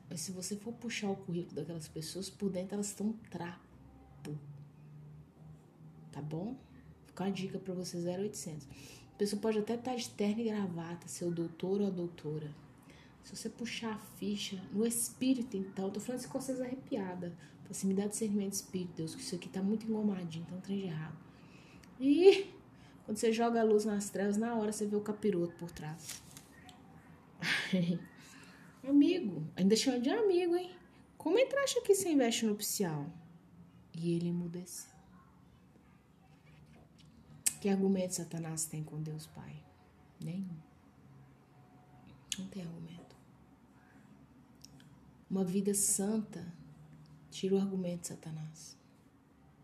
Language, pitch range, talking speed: Portuguese, 160-210 Hz, 150 wpm